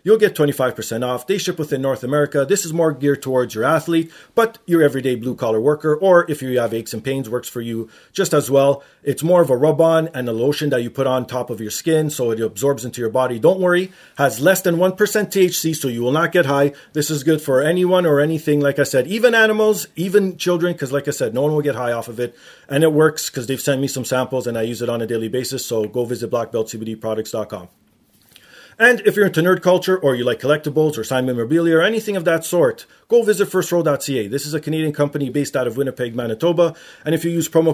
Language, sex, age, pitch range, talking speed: English, male, 30-49, 130-170 Hz, 240 wpm